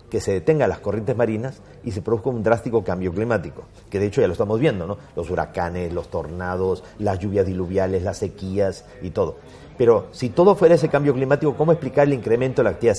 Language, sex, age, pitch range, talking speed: Spanish, male, 40-59, 100-140 Hz, 215 wpm